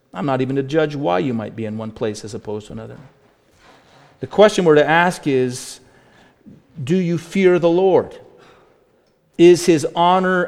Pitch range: 115-165 Hz